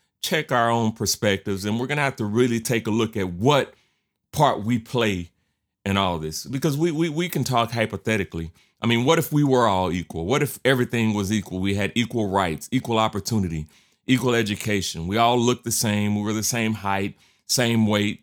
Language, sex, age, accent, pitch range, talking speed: English, male, 30-49, American, 105-135 Hz, 205 wpm